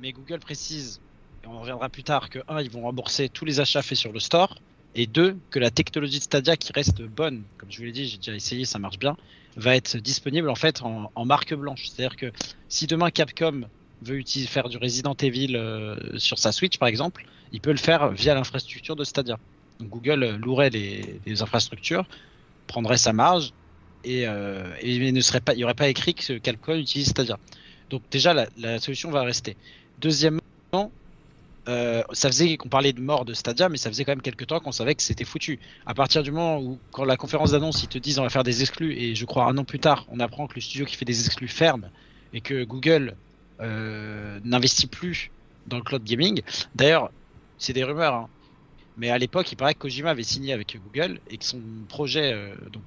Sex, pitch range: male, 115-145 Hz